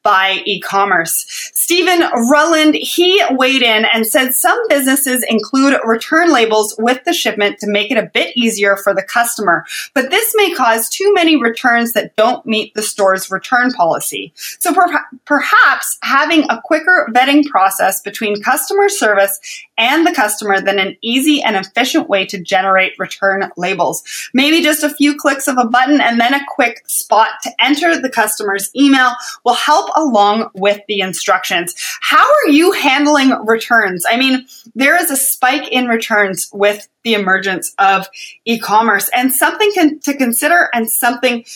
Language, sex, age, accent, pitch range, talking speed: English, female, 30-49, American, 215-295 Hz, 160 wpm